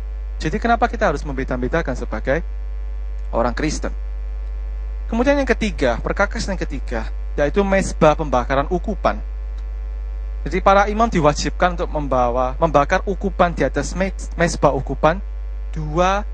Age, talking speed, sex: 30-49, 115 wpm, male